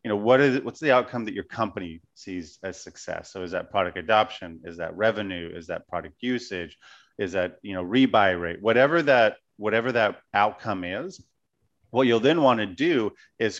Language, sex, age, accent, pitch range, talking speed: English, male, 30-49, American, 90-120 Hz, 195 wpm